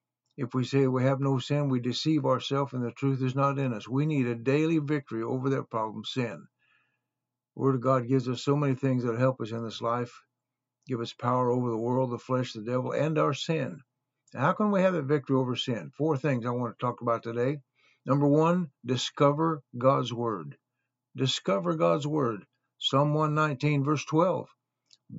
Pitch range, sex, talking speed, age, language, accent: 125-145 Hz, male, 195 wpm, 60-79, English, American